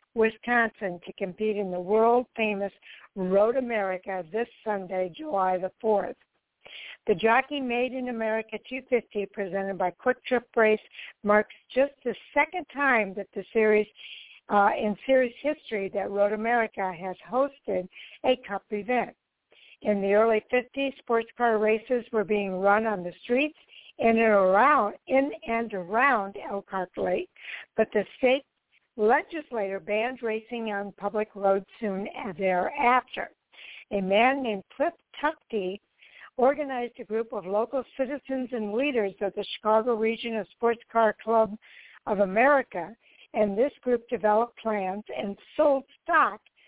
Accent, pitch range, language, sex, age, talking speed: American, 200-245 Hz, English, female, 60-79, 135 wpm